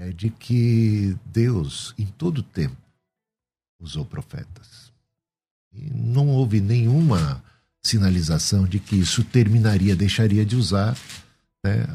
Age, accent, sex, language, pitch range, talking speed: 60-79, Brazilian, male, Portuguese, 95-125 Hz, 115 wpm